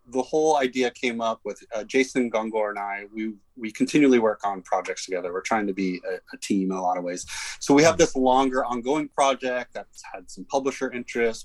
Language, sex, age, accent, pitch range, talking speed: English, male, 30-49, American, 110-130 Hz, 220 wpm